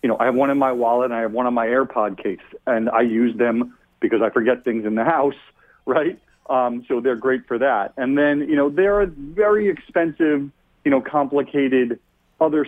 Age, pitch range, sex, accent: 40-59, 120-165 Hz, male, American